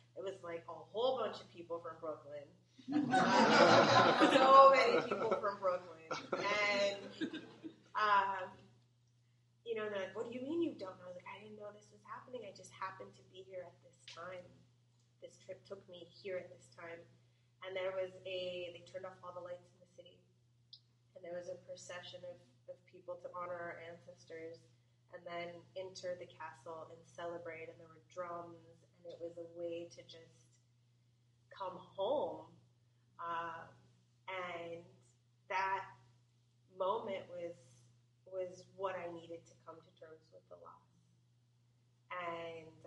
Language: English